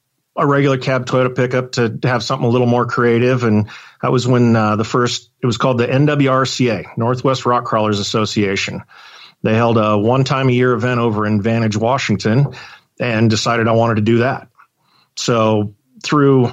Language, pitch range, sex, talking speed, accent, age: English, 115-130 Hz, male, 175 wpm, American, 40-59